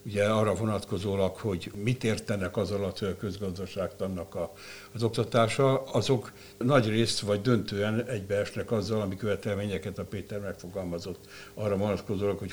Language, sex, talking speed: Hungarian, male, 135 wpm